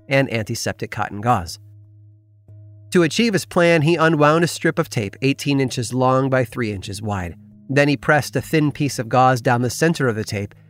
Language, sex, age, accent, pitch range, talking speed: English, male, 30-49, American, 105-145 Hz, 195 wpm